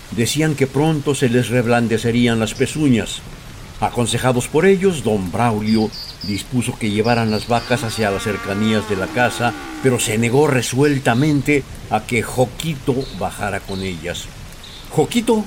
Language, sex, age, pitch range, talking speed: Spanish, male, 60-79, 110-145 Hz, 135 wpm